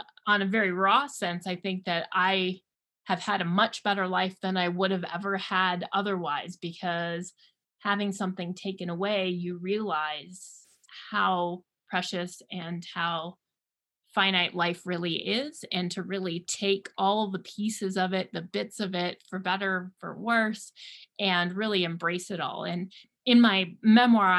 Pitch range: 180-220 Hz